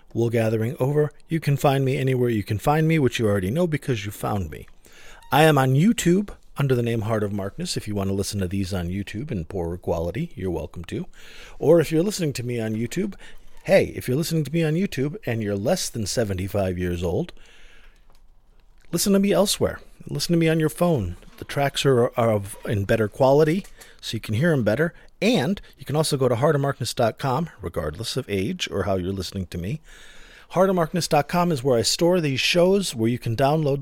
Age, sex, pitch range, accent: 40-59, male, 105-160 Hz, American